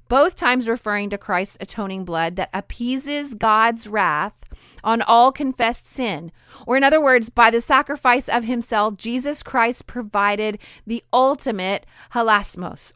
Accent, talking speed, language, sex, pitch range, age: American, 140 wpm, English, female, 210-265 Hz, 30-49